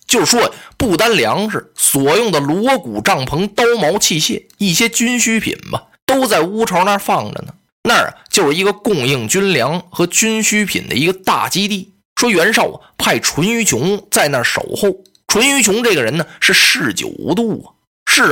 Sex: male